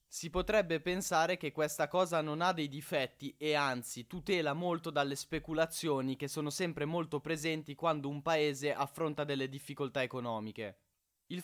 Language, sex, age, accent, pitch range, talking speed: Italian, male, 10-29, native, 140-170 Hz, 150 wpm